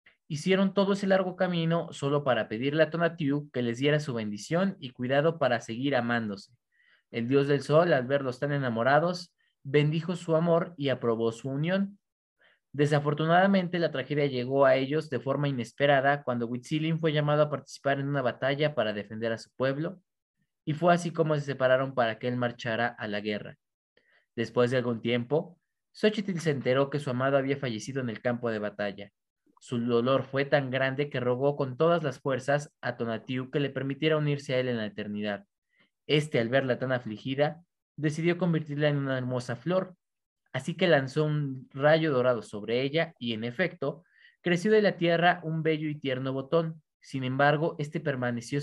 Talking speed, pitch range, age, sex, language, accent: 180 wpm, 125-155 Hz, 20-39, male, Spanish, Mexican